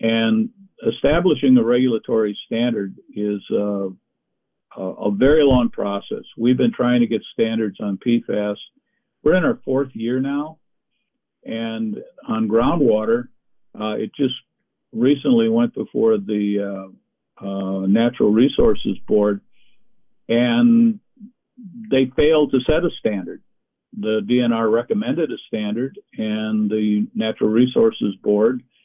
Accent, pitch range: American, 105-155 Hz